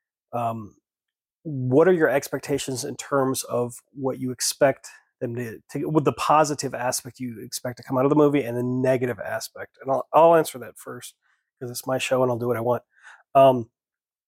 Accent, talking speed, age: American, 200 wpm, 30-49